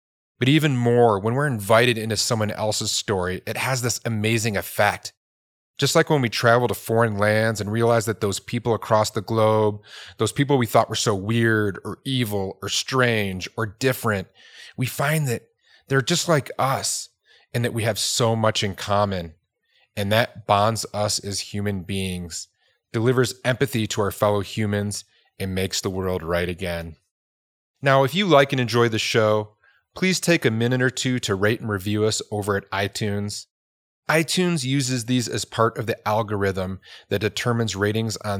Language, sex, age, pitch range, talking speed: English, male, 30-49, 100-120 Hz, 175 wpm